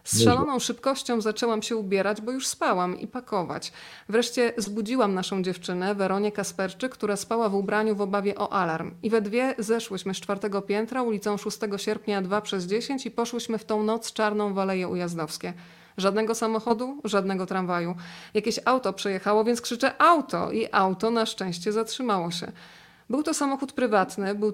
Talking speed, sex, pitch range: 165 wpm, female, 195-230 Hz